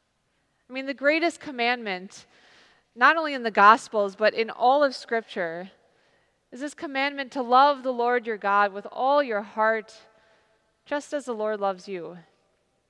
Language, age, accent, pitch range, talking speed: English, 30-49, American, 200-265 Hz, 160 wpm